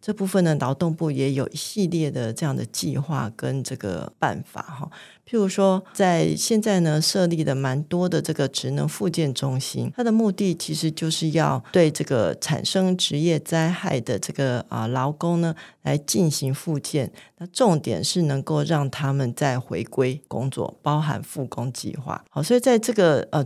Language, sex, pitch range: Chinese, female, 140-175 Hz